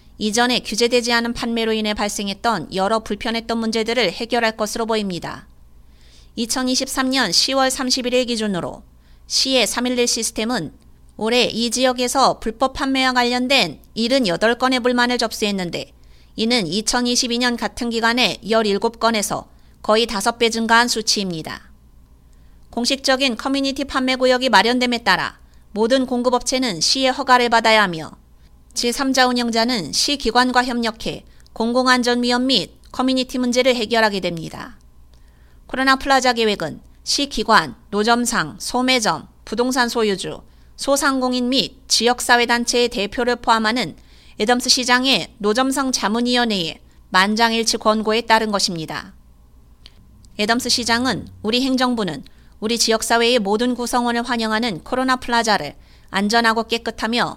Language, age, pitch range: Korean, 30-49, 210-250 Hz